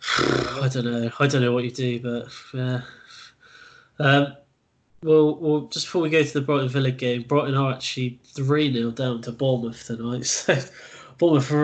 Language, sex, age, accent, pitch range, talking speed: English, male, 10-29, British, 125-150 Hz, 165 wpm